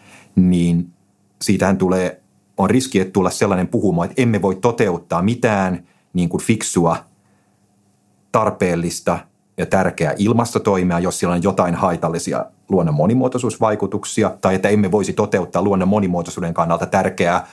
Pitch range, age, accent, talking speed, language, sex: 90-105 Hz, 30-49, native, 120 wpm, Finnish, male